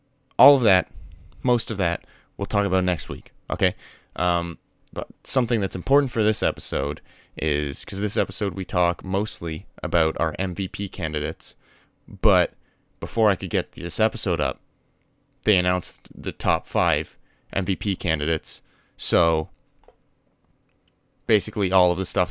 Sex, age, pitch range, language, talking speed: male, 20-39, 85-100 Hz, English, 140 wpm